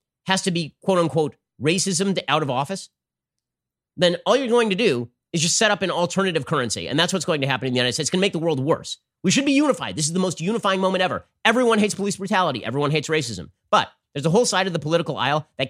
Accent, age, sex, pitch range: American, 30-49, male, 135-180 Hz